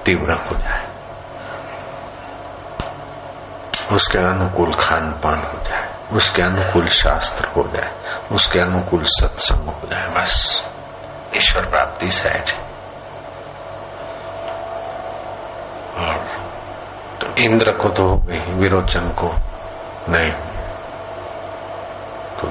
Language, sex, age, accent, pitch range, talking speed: Hindi, male, 60-79, native, 85-95 Hz, 90 wpm